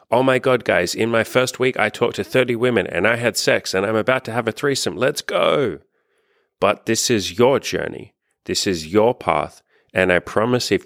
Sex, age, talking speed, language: male, 30-49, 215 wpm, English